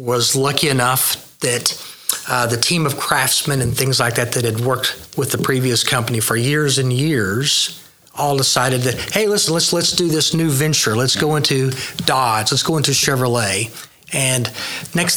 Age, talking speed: 40-59, 180 wpm